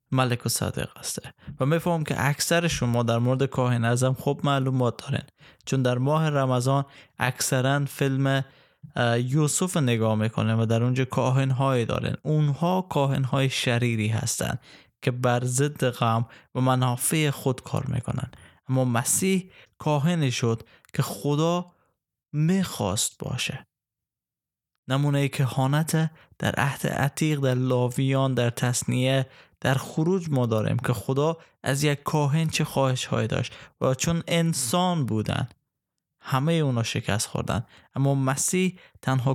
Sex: male